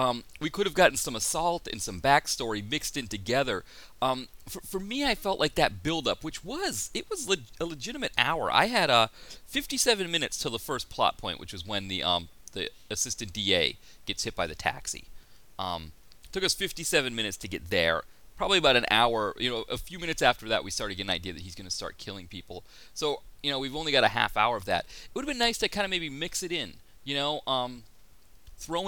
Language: English